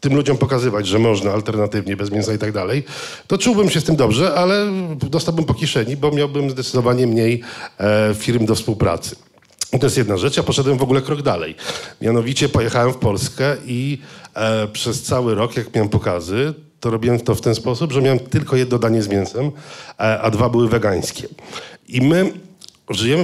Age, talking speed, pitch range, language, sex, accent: 40-59, 190 wpm, 110-135 Hz, Polish, male, native